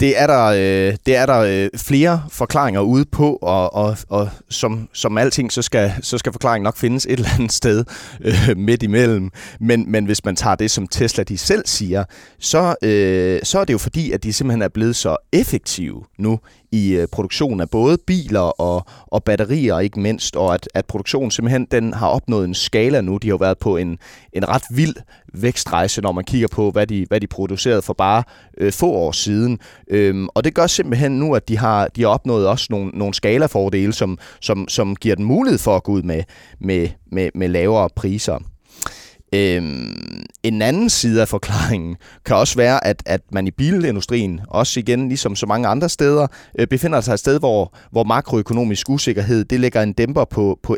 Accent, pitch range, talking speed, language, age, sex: native, 100-125 Hz, 190 wpm, Danish, 30-49, male